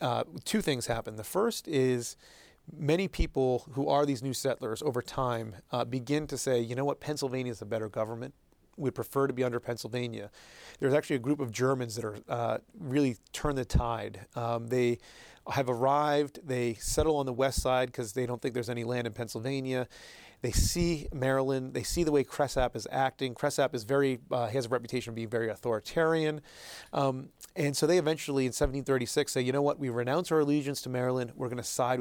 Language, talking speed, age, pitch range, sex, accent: English, 200 wpm, 30-49, 120-140 Hz, male, American